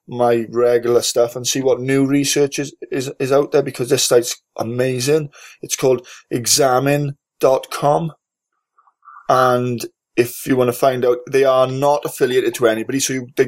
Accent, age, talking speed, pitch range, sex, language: British, 20-39, 160 wpm, 105-140 Hz, male, English